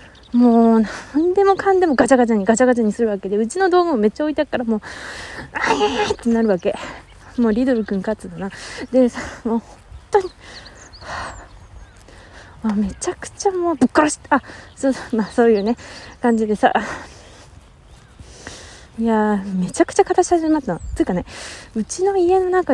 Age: 20-39